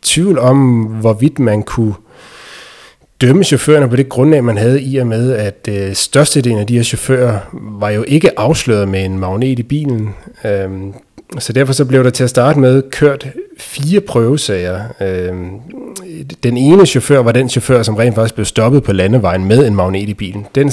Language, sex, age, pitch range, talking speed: Danish, male, 30-49, 105-135 Hz, 185 wpm